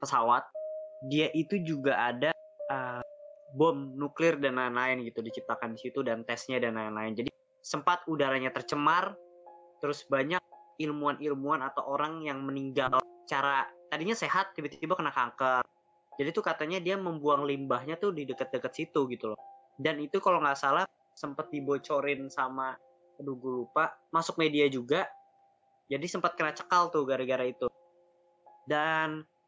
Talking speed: 140 wpm